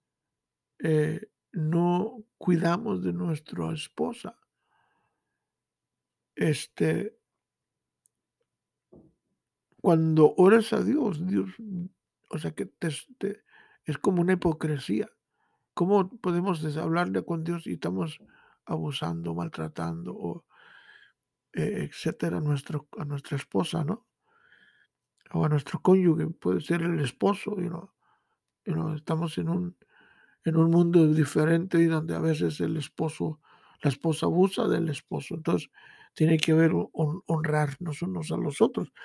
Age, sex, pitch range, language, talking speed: 60-79, male, 155-180 Hz, Spanish, 125 wpm